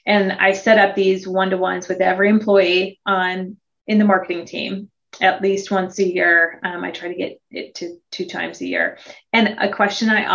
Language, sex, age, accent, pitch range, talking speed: English, female, 30-49, American, 185-210 Hz, 195 wpm